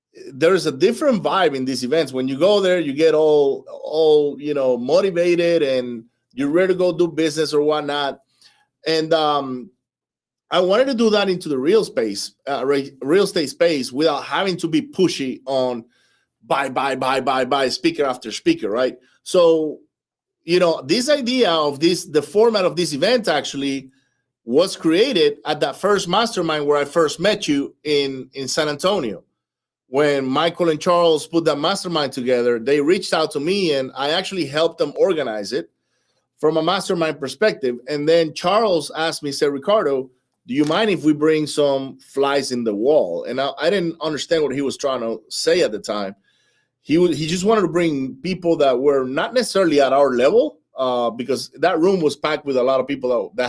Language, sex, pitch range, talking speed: English, male, 140-185 Hz, 190 wpm